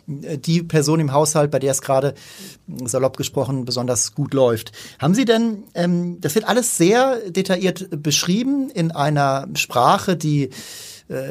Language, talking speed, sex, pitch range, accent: German, 145 wpm, male, 140-175 Hz, German